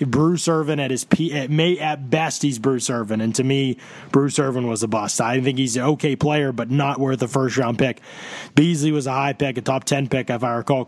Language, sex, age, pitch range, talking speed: English, male, 20-39, 140-175 Hz, 250 wpm